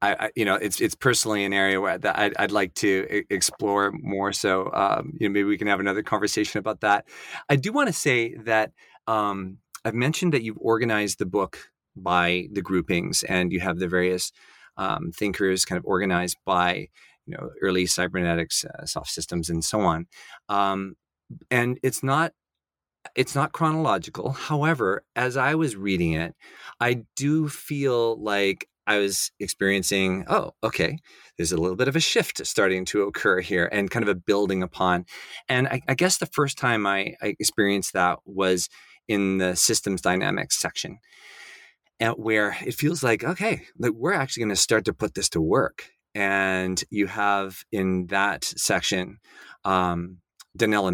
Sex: male